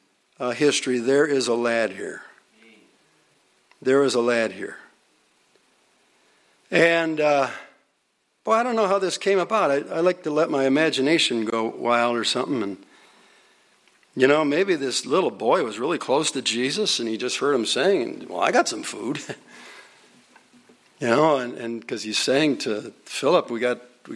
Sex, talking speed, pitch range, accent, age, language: male, 170 wpm, 120-180 Hz, American, 60-79, English